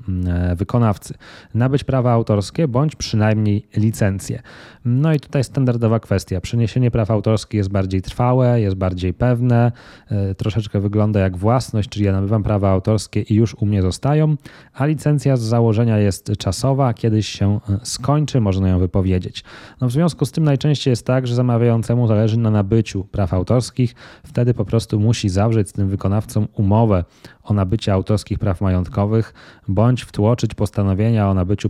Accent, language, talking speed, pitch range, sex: native, Polish, 155 wpm, 100-120 Hz, male